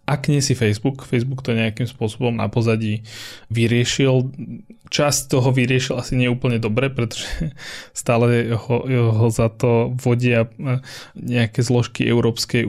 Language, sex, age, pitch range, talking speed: Slovak, male, 20-39, 110-125 Hz, 125 wpm